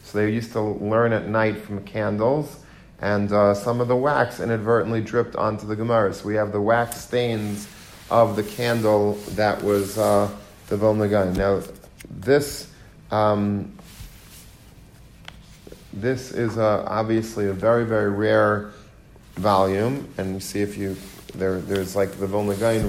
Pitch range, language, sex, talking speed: 100-115 Hz, English, male, 145 wpm